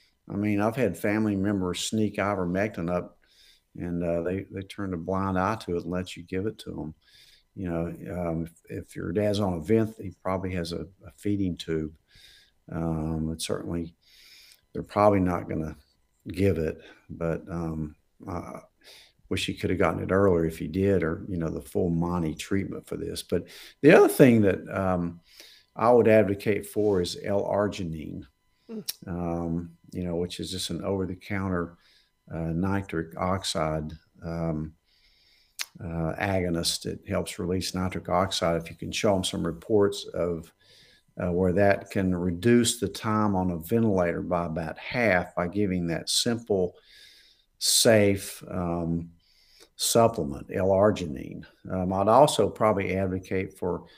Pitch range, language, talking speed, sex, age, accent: 85-100 Hz, English, 160 wpm, male, 50-69, American